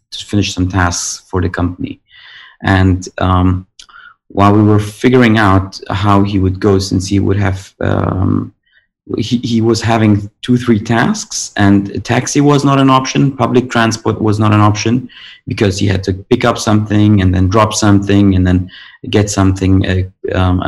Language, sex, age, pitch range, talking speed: English, male, 30-49, 95-120 Hz, 170 wpm